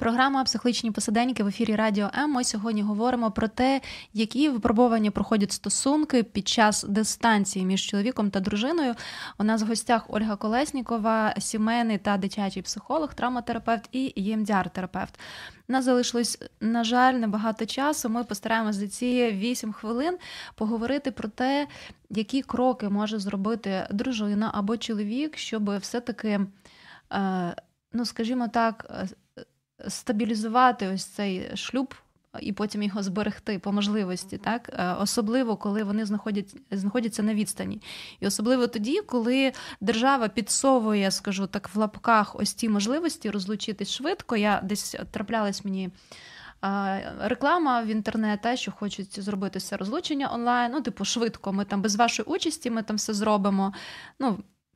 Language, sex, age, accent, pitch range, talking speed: Ukrainian, female, 20-39, native, 205-245 Hz, 135 wpm